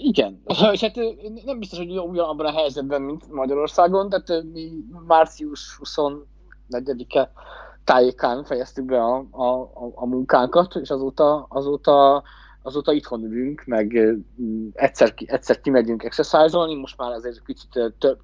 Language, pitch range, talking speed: Hungarian, 120-160 Hz, 130 wpm